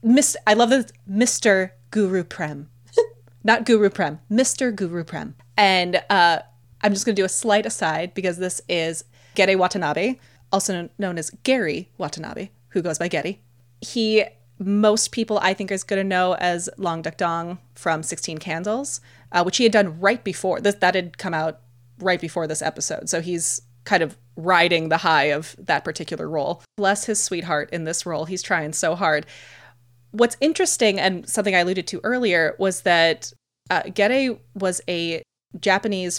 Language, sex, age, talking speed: English, female, 20-39, 170 wpm